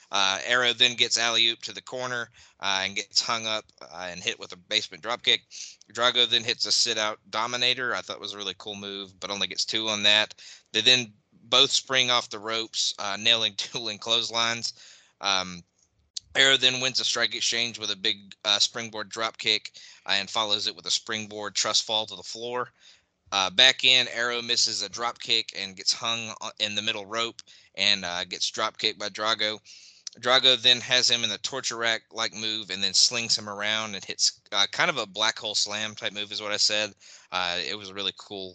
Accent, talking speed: American, 205 wpm